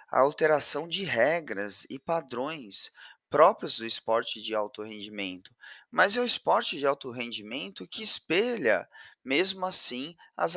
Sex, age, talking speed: male, 20-39, 135 wpm